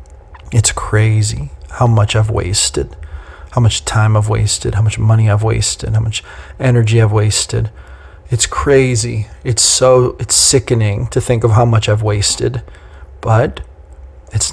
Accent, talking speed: American, 150 wpm